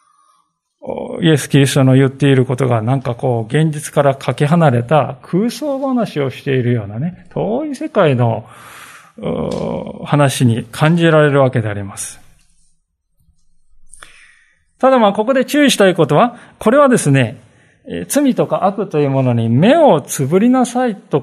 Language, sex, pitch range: Japanese, male, 140-200 Hz